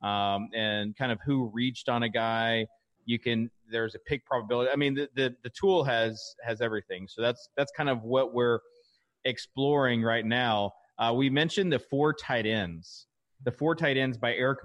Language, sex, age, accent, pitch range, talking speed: English, male, 30-49, American, 115-150 Hz, 195 wpm